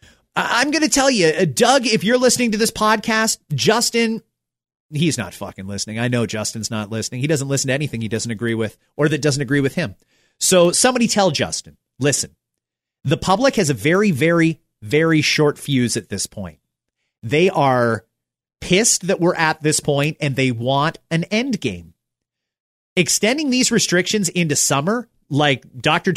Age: 30-49